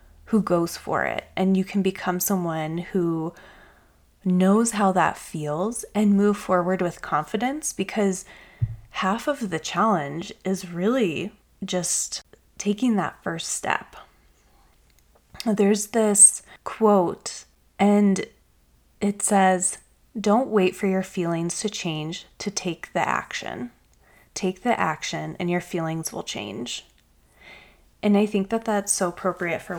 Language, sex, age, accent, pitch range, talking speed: English, female, 20-39, American, 170-205 Hz, 130 wpm